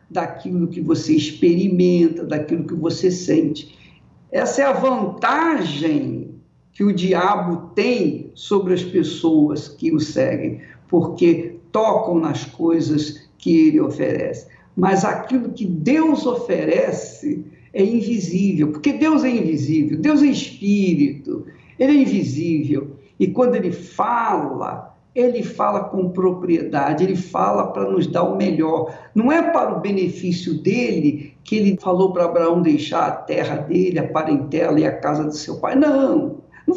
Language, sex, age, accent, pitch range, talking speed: Portuguese, male, 60-79, Brazilian, 165-255 Hz, 140 wpm